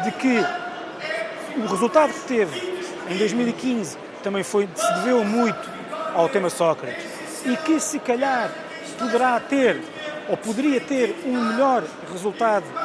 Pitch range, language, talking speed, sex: 195-270 Hz, Portuguese, 125 wpm, male